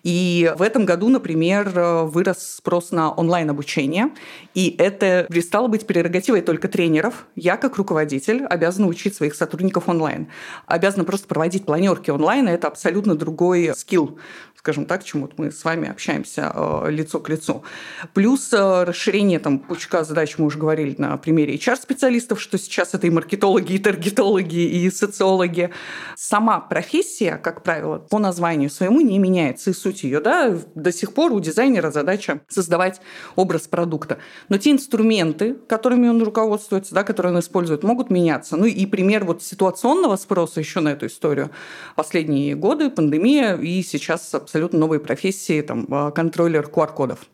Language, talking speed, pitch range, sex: Russian, 150 wpm, 165-215 Hz, female